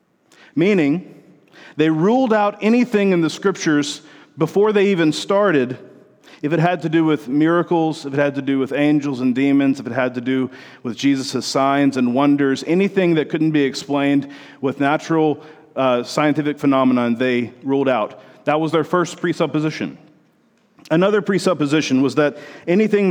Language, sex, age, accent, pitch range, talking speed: English, male, 40-59, American, 135-175 Hz, 160 wpm